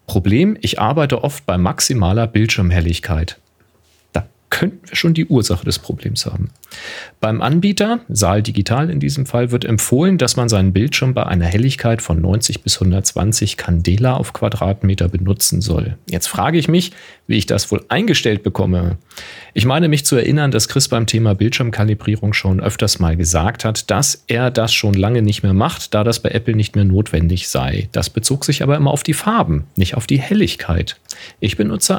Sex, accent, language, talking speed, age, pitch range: male, German, English, 180 wpm, 40-59, 95-130 Hz